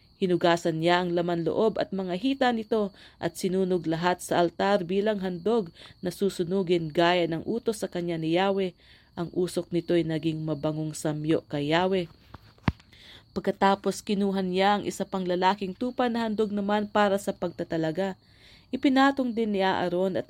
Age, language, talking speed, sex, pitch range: 40-59, English, 155 wpm, female, 170-200 Hz